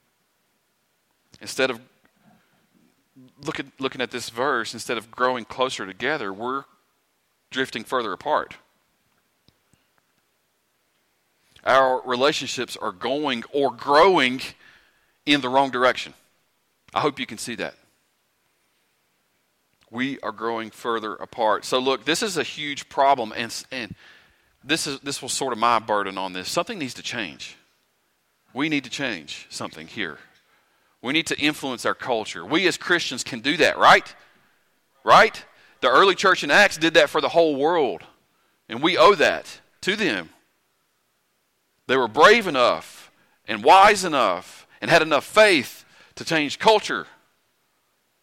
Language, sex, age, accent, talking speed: English, male, 40-59, American, 140 wpm